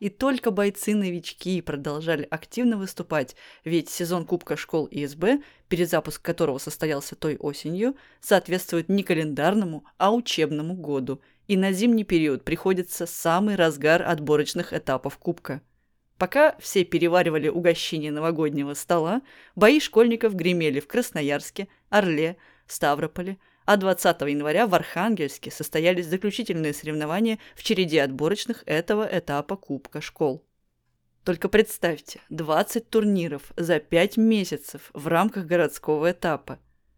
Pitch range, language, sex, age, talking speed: 150-200 Hz, Russian, female, 20-39, 115 wpm